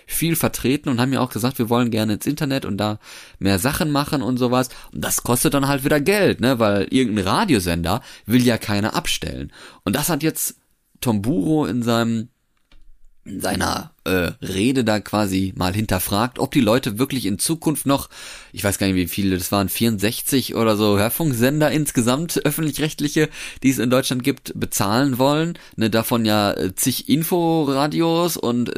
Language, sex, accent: German, male, German